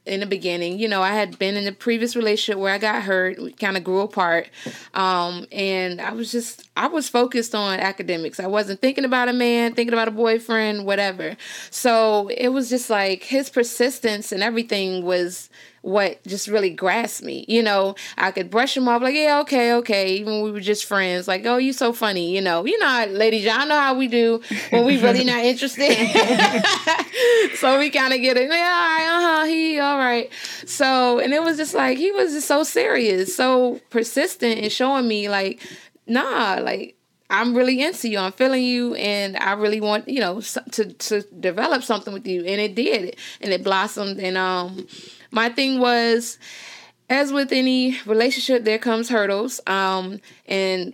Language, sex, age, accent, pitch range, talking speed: English, female, 20-39, American, 195-255 Hz, 195 wpm